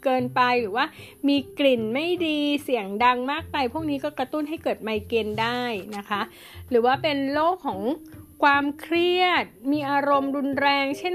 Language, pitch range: Thai, 225-285 Hz